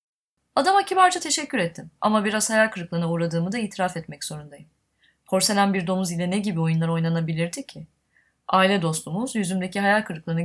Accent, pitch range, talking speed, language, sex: native, 165-210 Hz, 155 wpm, Turkish, female